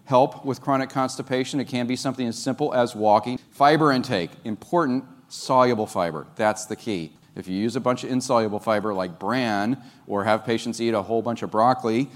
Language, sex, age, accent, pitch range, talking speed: English, male, 40-59, American, 105-130 Hz, 195 wpm